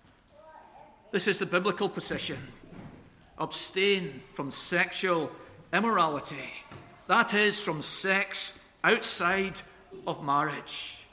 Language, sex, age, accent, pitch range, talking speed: English, male, 50-69, British, 170-225 Hz, 85 wpm